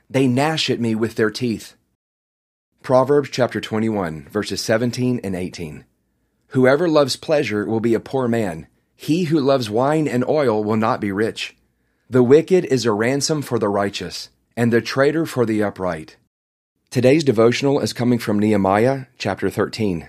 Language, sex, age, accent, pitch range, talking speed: English, male, 30-49, American, 105-130 Hz, 160 wpm